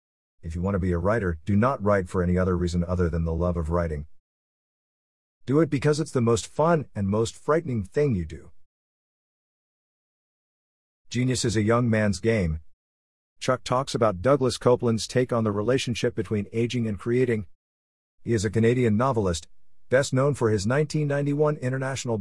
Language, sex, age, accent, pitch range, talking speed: English, male, 50-69, American, 90-120 Hz, 170 wpm